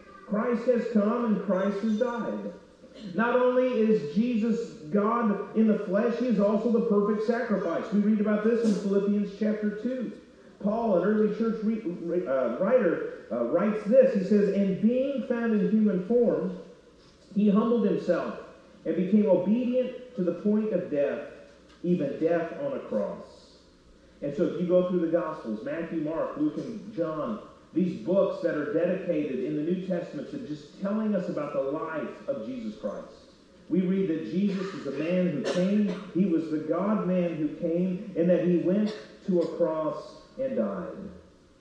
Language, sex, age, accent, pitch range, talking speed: English, male, 40-59, American, 175-220 Hz, 170 wpm